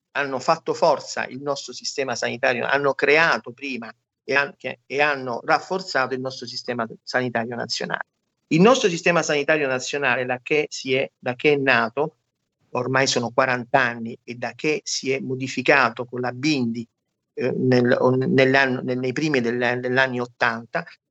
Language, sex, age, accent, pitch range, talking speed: Italian, male, 50-69, native, 130-175 Hz, 150 wpm